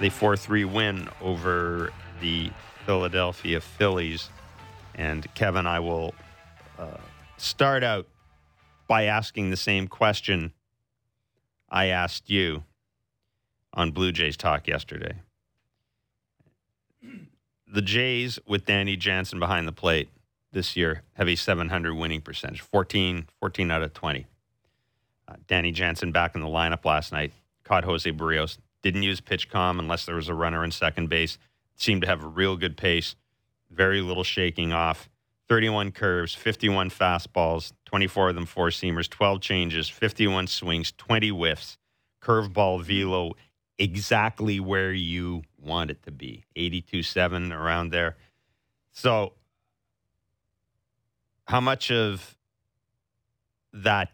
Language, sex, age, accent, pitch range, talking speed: English, male, 40-59, American, 85-110 Hz, 125 wpm